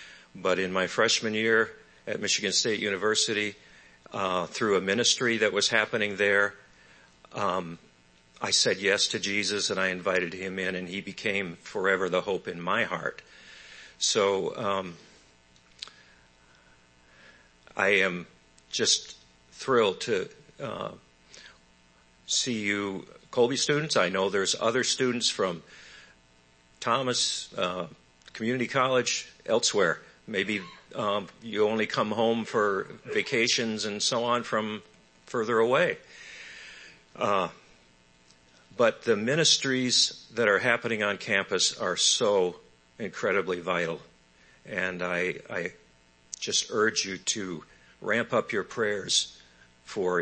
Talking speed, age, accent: 120 wpm, 50-69, American